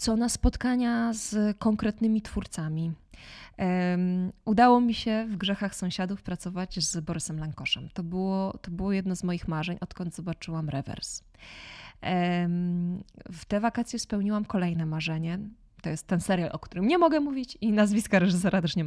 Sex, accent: female, native